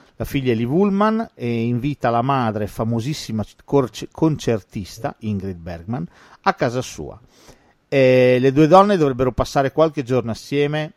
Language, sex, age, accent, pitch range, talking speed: Italian, male, 40-59, native, 105-130 Hz, 135 wpm